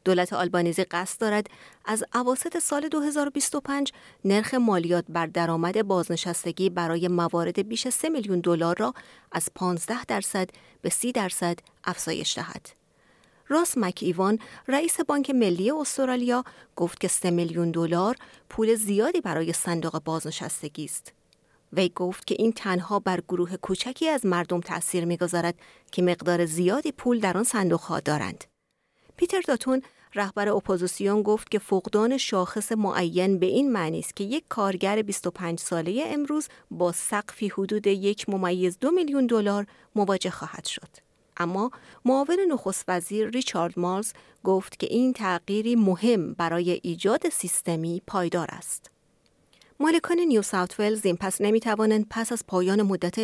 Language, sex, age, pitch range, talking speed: Persian, female, 30-49, 175-235 Hz, 140 wpm